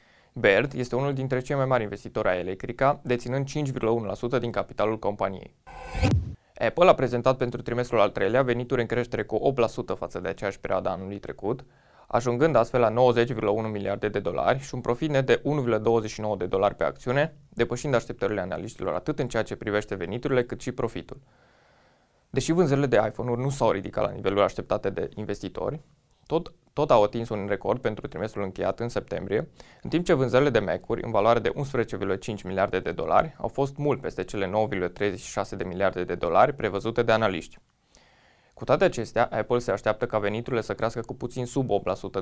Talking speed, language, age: 180 wpm, Romanian, 20-39